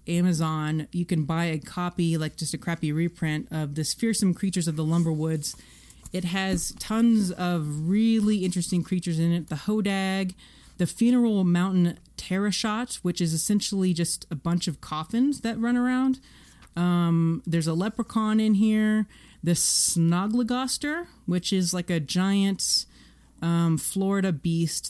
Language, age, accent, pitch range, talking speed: English, 30-49, American, 155-195 Hz, 145 wpm